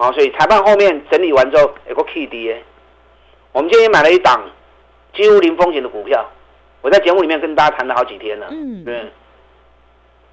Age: 50-69